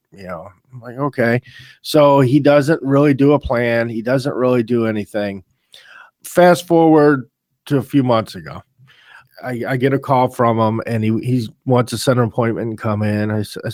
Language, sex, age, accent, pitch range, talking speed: English, male, 40-59, American, 115-150 Hz, 190 wpm